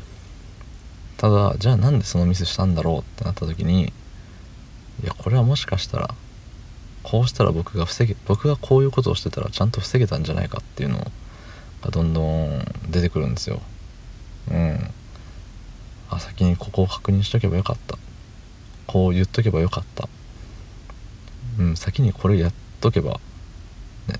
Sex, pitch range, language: male, 90-115 Hz, Japanese